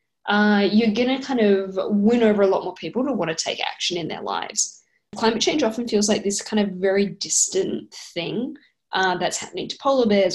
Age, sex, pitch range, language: 10-29, female, 185-225 Hz, English